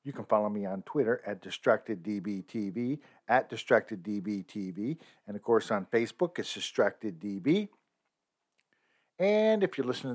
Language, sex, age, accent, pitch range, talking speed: English, male, 50-69, American, 115-160 Hz, 125 wpm